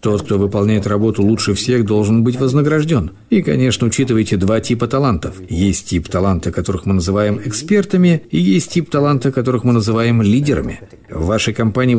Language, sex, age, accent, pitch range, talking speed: Russian, male, 50-69, native, 105-130 Hz, 165 wpm